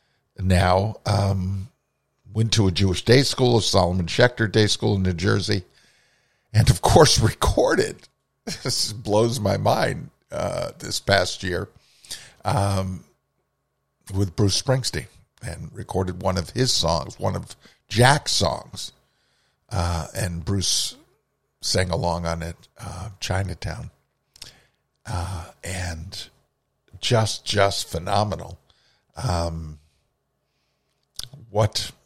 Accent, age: American, 50-69